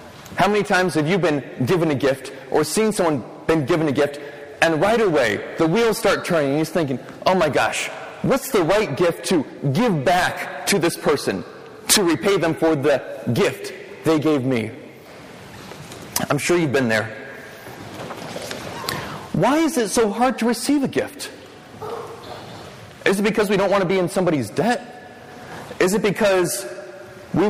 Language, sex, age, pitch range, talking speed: English, male, 30-49, 145-215 Hz, 170 wpm